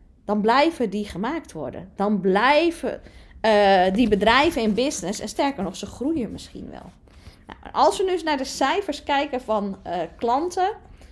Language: Dutch